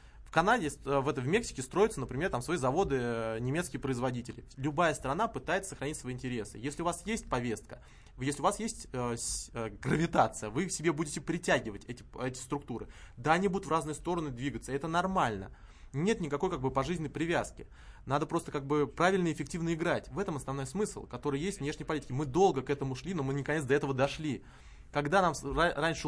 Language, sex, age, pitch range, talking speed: Russian, male, 20-39, 130-165 Hz, 190 wpm